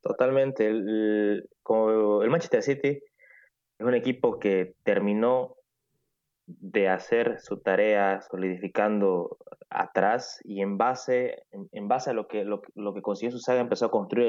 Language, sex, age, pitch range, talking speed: Spanish, male, 20-39, 105-135 Hz, 145 wpm